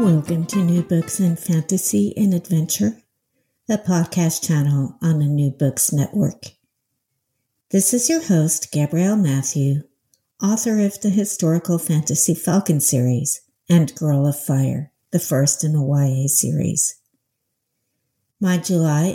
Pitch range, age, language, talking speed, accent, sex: 145-200 Hz, 60-79, English, 130 wpm, American, female